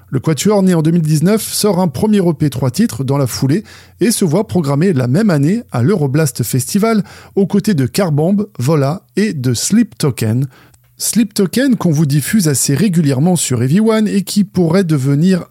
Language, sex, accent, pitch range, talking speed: French, male, French, 130-195 Hz, 180 wpm